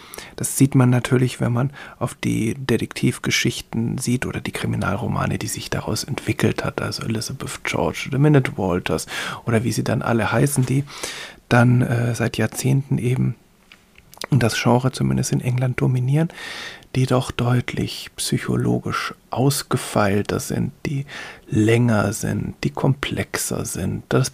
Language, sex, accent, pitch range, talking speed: German, male, German, 115-145 Hz, 135 wpm